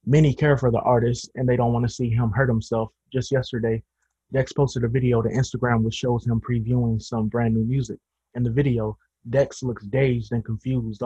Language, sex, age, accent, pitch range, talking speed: English, male, 20-39, American, 110-130 Hz, 205 wpm